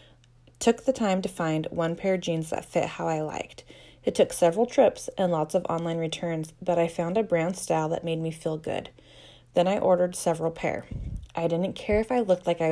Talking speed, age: 220 wpm, 20-39